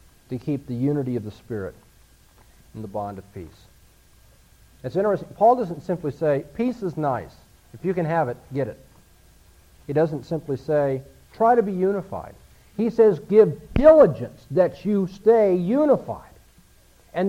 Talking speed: 155 wpm